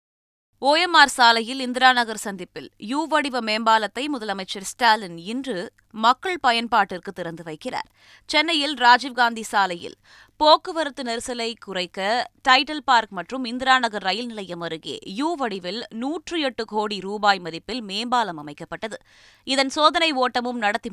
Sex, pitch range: female, 190-255 Hz